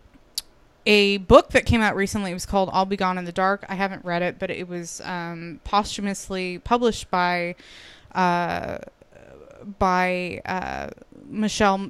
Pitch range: 180-210 Hz